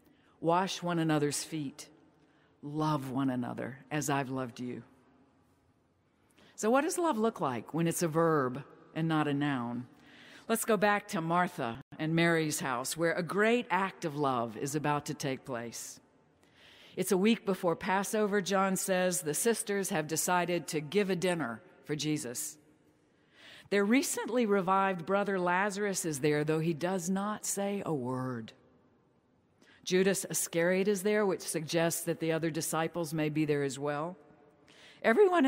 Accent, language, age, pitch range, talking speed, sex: American, English, 50-69, 150-195 Hz, 155 wpm, female